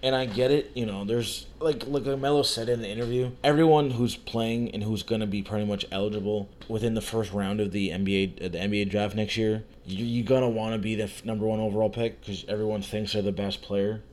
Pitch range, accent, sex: 100-120 Hz, American, male